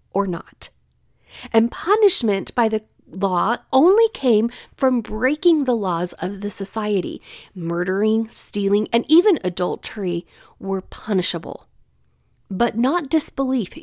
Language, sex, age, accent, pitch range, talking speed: English, female, 40-59, American, 190-265 Hz, 115 wpm